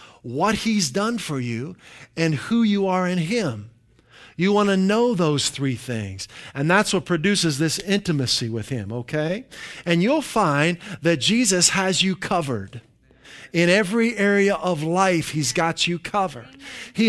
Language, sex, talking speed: English, male, 160 wpm